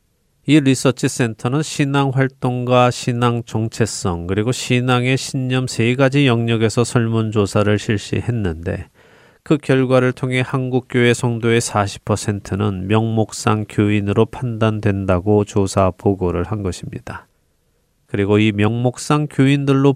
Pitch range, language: 100-130 Hz, Korean